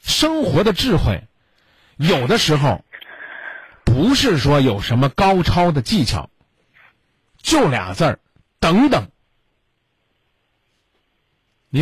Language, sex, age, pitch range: Chinese, male, 50-69, 120-190 Hz